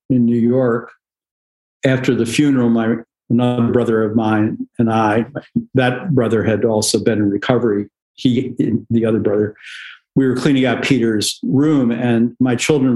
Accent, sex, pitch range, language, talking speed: American, male, 115-130 Hz, English, 155 wpm